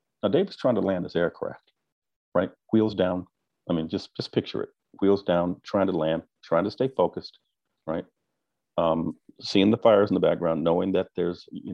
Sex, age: male, 50-69